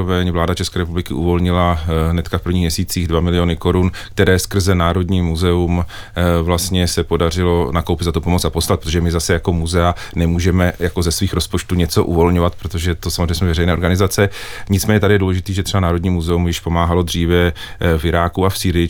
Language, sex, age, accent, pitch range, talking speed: Czech, male, 40-59, native, 85-95 Hz, 185 wpm